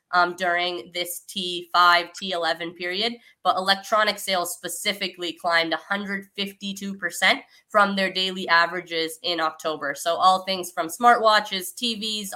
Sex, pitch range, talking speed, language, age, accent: female, 175-215 Hz, 115 wpm, English, 20-39, American